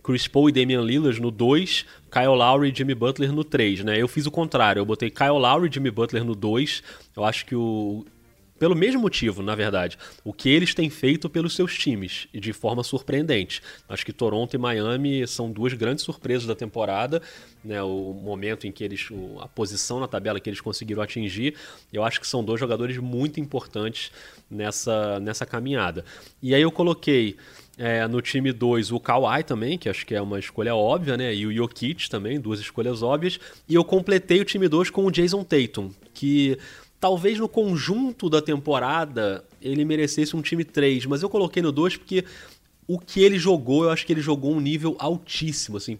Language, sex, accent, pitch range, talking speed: Portuguese, male, Brazilian, 110-155 Hz, 195 wpm